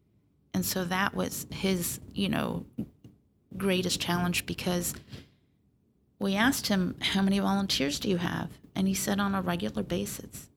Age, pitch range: 30-49, 165-195 Hz